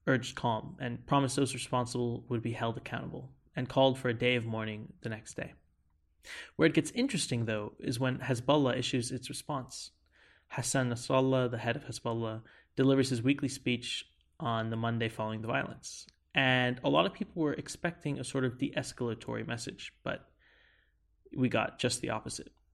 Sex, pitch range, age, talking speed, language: male, 115-135 Hz, 20-39, 170 wpm, English